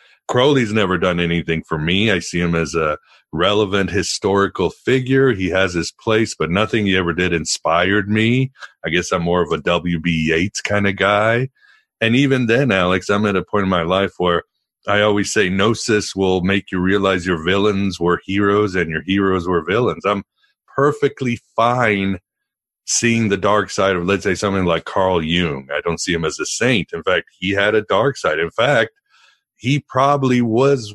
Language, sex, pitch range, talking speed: English, male, 90-115 Hz, 190 wpm